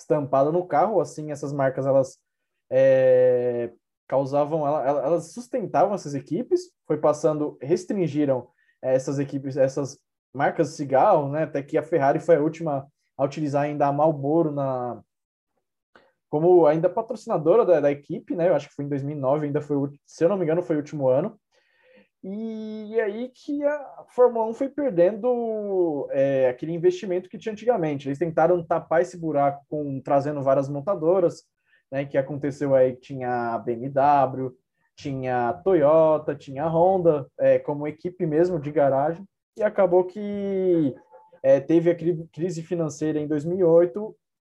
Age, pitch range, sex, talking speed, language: 20-39, 140-180 Hz, male, 155 wpm, Portuguese